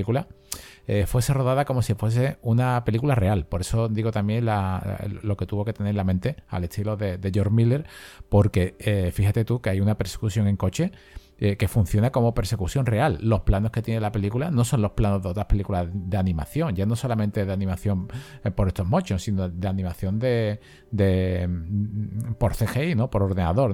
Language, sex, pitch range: Spanish, male, 95-115 Hz